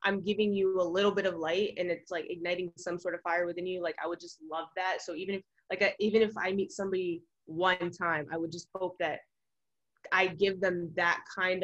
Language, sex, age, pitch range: English, female, 20-39, 175-200 Hz